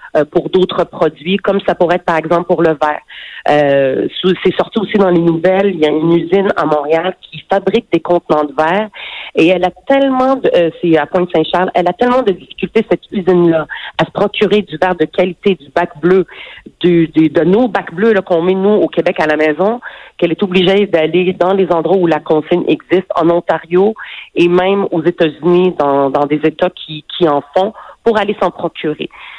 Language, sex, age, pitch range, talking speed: French, female, 40-59, 160-190 Hz, 205 wpm